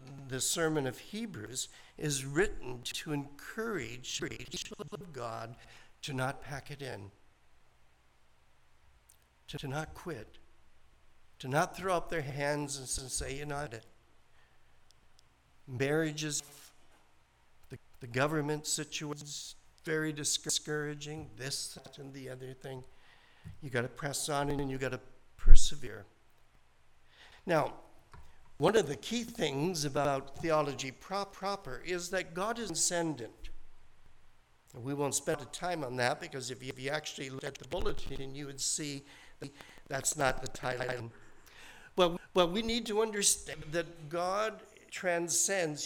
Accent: American